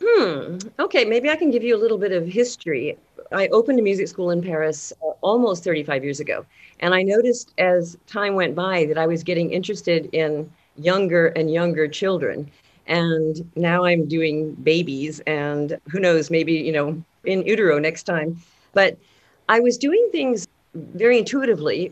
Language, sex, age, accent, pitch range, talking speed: English, female, 50-69, American, 155-200 Hz, 170 wpm